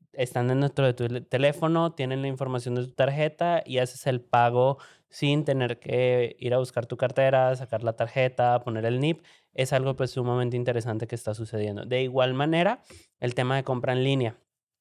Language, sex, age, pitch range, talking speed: Spanish, male, 20-39, 110-130 Hz, 185 wpm